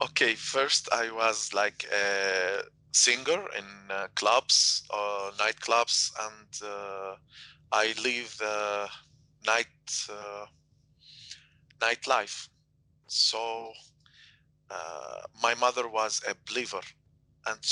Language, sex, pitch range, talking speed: English, male, 110-130 Hz, 90 wpm